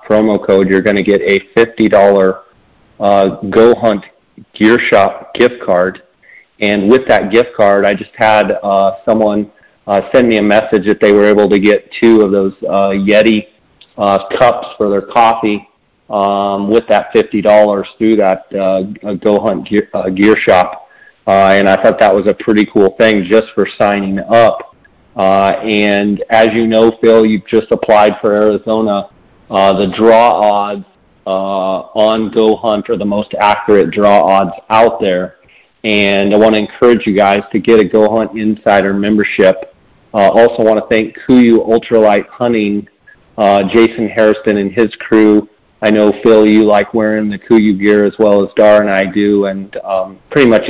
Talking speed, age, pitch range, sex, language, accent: 175 wpm, 40-59, 100-110 Hz, male, English, American